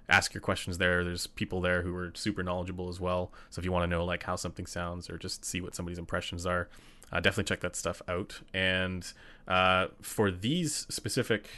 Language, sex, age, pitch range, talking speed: English, male, 30-49, 90-100 Hz, 215 wpm